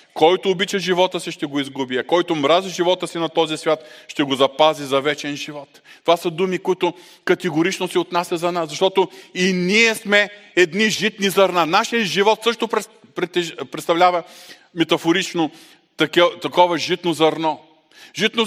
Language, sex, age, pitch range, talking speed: Bulgarian, male, 40-59, 170-215 Hz, 155 wpm